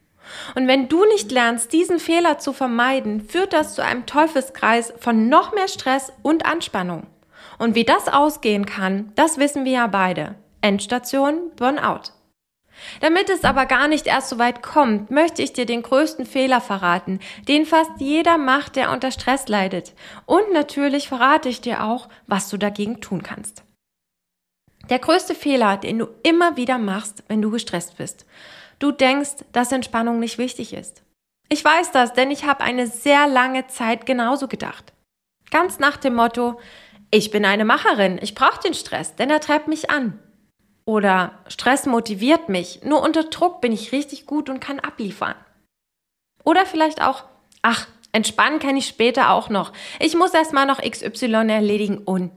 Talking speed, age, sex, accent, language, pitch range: 165 wpm, 20-39, female, German, German, 215-290 Hz